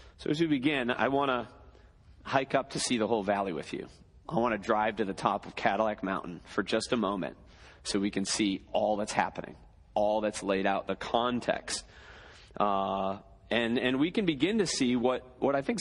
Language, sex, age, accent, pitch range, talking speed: English, male, 40-59, American, 110-185 Hz, 210 wpm